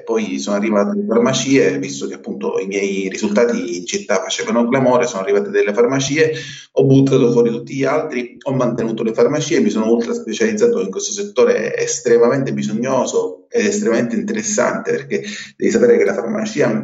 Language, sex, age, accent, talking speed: Italian, male, 30-49, native, 170 wpm